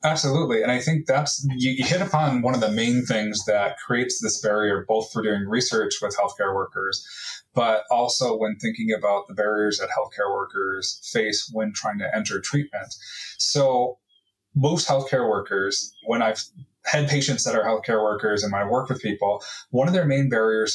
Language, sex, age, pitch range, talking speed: English, male, 20-39, 105-130 Hz, 180 wpm